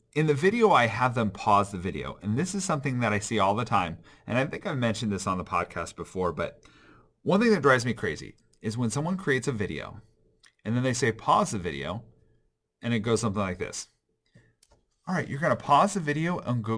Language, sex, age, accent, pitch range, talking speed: English, male, 40-59, American, 105-145 Hz, 235 wpm